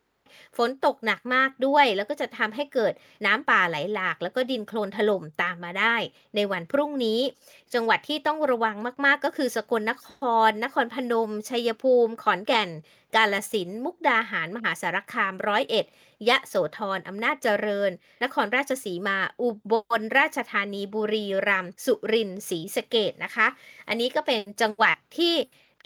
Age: 20-39